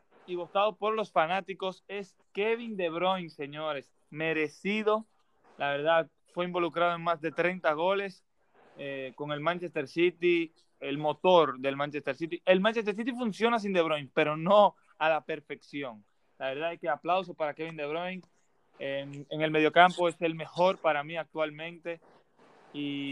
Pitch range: 150-190 Hz